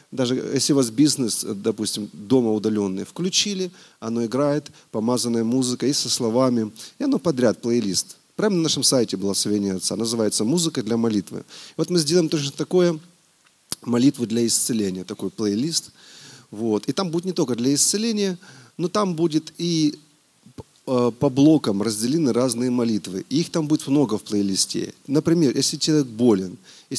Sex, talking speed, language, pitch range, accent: male, 150 wpm, Russian, 115-155 Hz, native